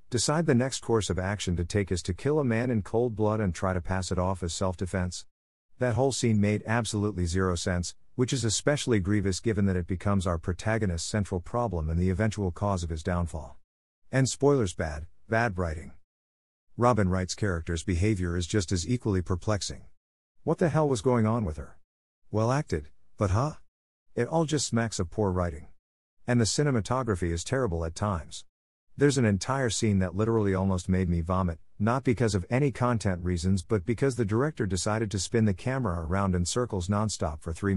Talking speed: 190 wpm